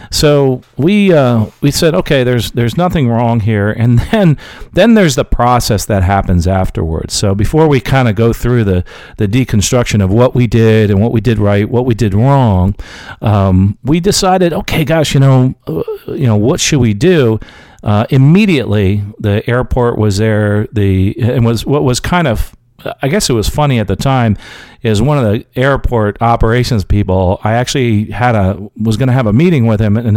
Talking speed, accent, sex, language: 195 wpm, American, male, English